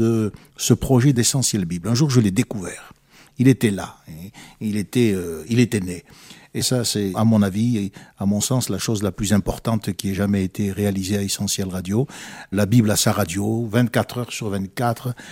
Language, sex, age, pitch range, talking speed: French, male, 60-79, 100-120 Hz, 200 wpm